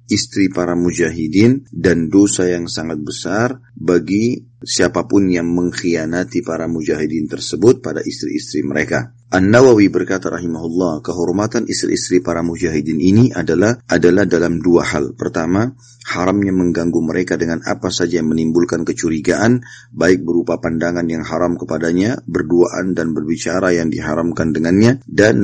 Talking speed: 125 wpm